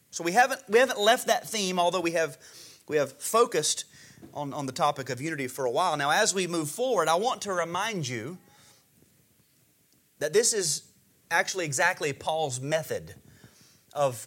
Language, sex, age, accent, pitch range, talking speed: English, male, 30-49, American, 140-205 Hz, 175 wpm